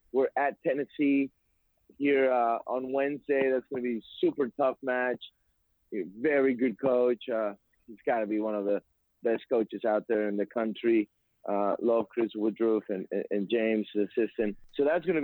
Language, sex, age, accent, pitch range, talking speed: English, male, 30-49, American, 115-135 Hz, 180 wpm